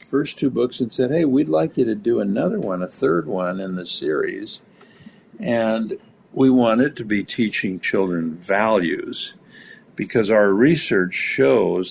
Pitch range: 95-130 Hz